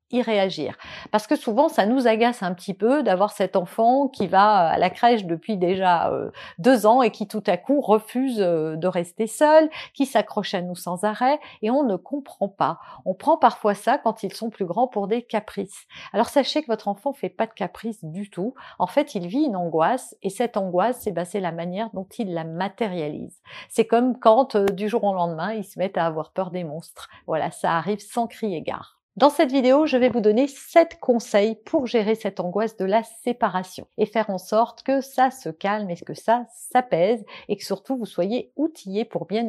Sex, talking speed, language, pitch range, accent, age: female, 210 wpm, French, 190-250 Hz, French, 50-69